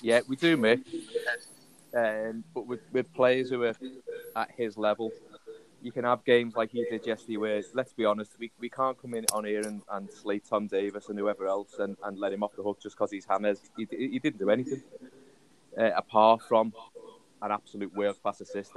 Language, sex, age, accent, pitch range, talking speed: English, male, 20-39, British, 105-125 Hz, 210 wpm